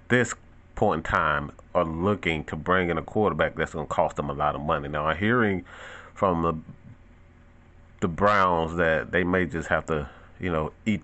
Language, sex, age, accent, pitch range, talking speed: English, male, 30-49, American, 75-90 Hz, 190 wpm